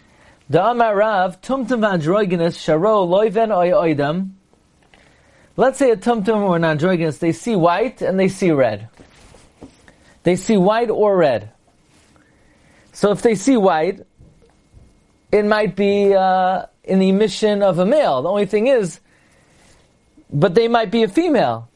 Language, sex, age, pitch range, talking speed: English, male, 40-59, 185-230 Hz, 115 wpm